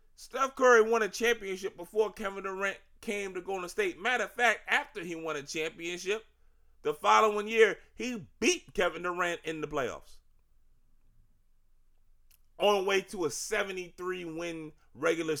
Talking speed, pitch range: 150 wpm, 135-225 Hz